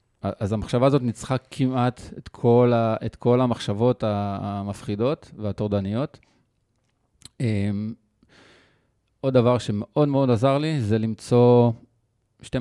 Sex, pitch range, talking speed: male, 100-125 Hz, 100 wpm